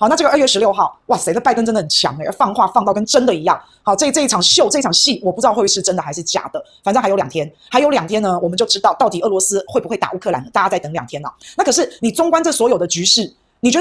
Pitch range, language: 195-275 Hz, Chinese